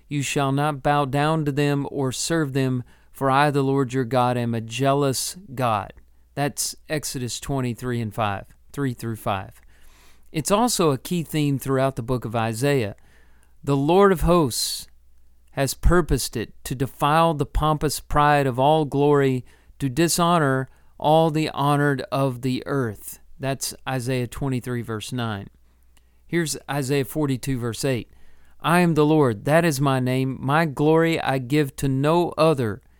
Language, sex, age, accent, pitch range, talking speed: English, male, 40-59, American, 115-150 Hz, 155 wpm